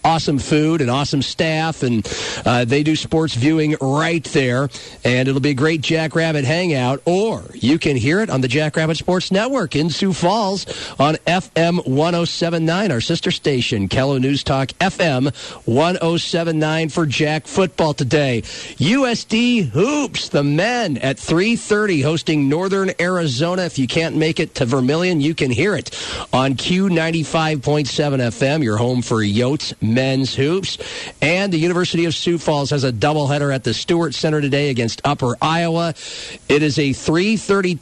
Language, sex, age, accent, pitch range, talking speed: English, male, 50-69, American, 130-170 Hz, 155 wpm